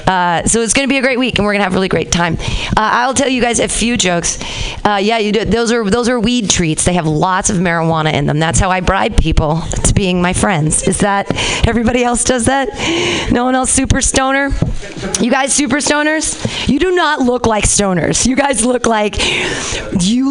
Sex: female